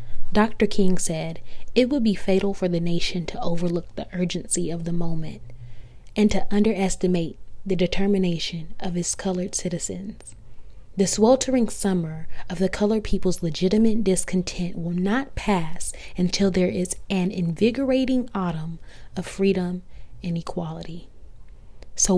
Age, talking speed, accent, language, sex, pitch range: 20-39, 135 wpm, American, English, female, 170-200 Hz